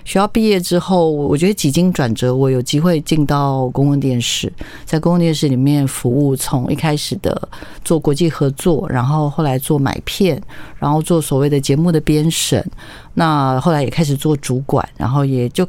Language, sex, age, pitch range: Chinese, female, 50-69, 140-175 Hz